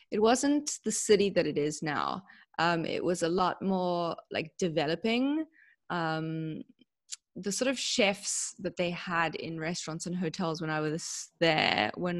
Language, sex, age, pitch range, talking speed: English, female, 20-39, 160-215 Hz, 160 wpm